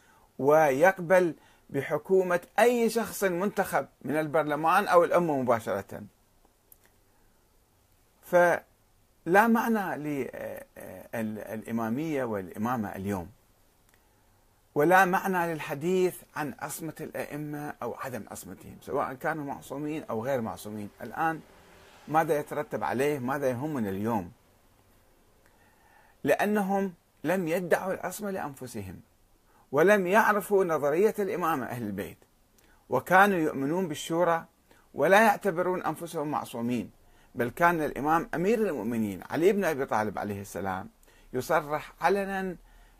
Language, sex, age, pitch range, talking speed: Arabic, male, 40-59, 115-180 Hz, 95 wpm